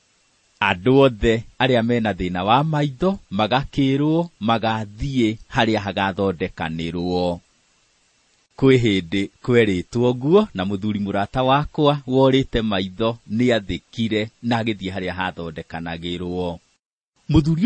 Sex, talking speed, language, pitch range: male, 100 wpm, English, 100-150 Hz